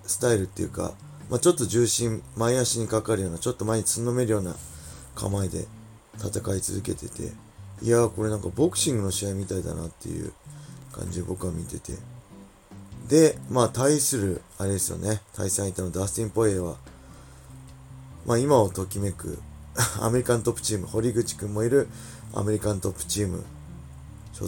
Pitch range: 95-120 Hz